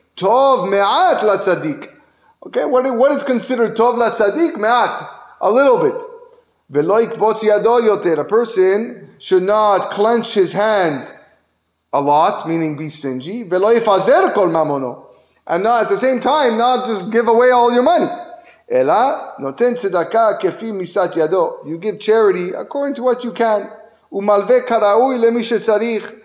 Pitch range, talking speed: 185-235 Hz, 130 wpm